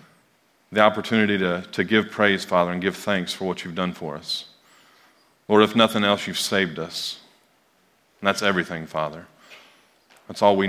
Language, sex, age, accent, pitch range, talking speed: English, male, 30-49, American, 100-150 Hz, 170 wpm